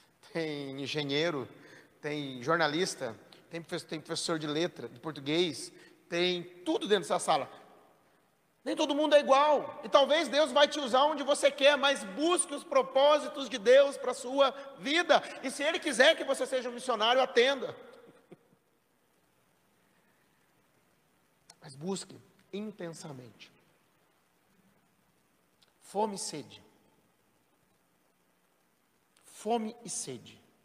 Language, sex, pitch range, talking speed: Portuguese, male, 150-255 Hz, 115 wpm